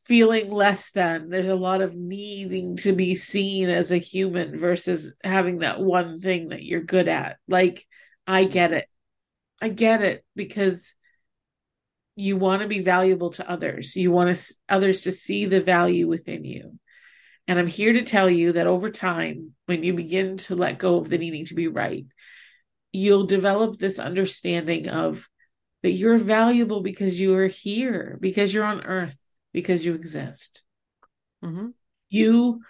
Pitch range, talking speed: 175-200 Hz, 165 wpm